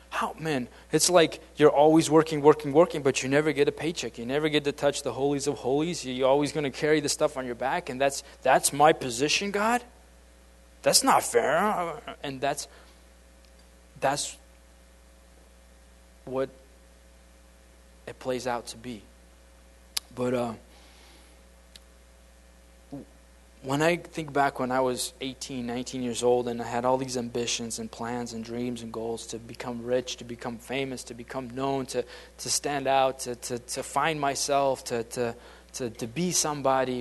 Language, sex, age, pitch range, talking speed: English, male, 20-39, 110-140 Hz, 165 wpm